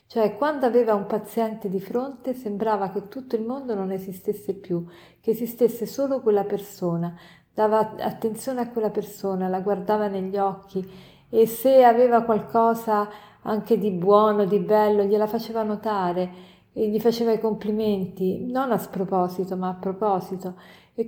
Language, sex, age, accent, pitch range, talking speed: Italian, female, 50-69, native, 190-225 Hz, 150 wpm